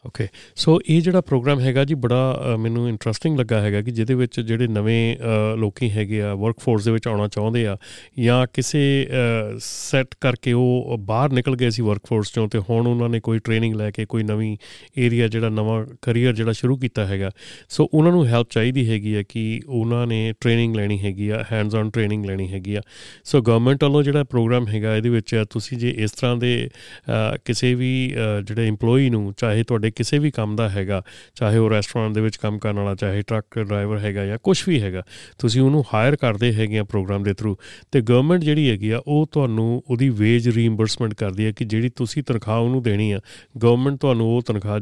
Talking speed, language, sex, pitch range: 200 wpm, Punjabi, male, 110-125 Hz